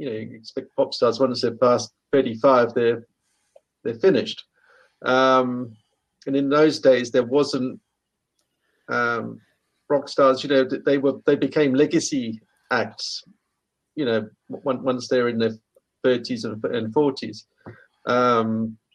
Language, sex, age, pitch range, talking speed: English, male, 50-69, 115-145 Hz, 130 wpm